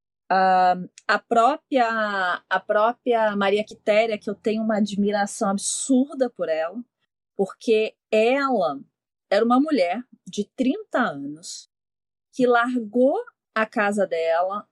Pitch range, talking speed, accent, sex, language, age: 190-270 Hz, 105 wpm, Brazilian, female, Portuguese, 30-49